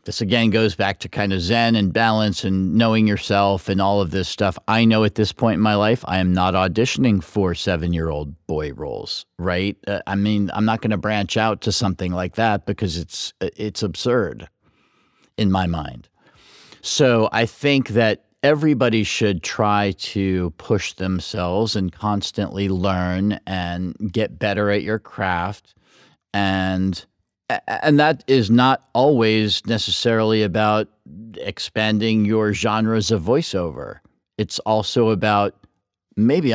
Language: English